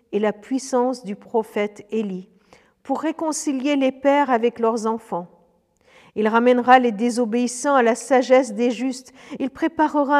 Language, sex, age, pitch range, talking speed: French, female, 50-69, 215-270 Hz, 140 wpm